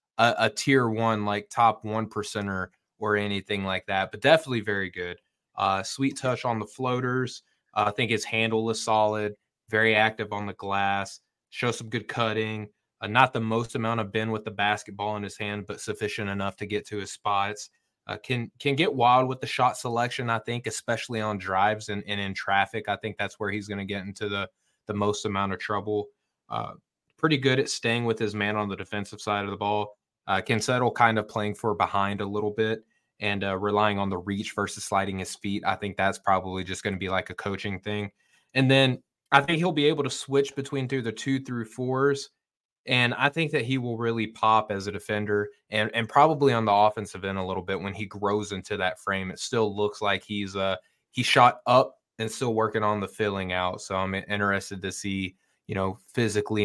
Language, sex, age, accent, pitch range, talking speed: English, male, 20-39, American, 100-115 Hz, 220 wpm